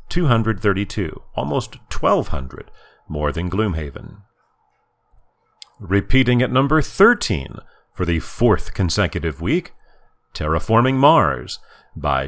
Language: English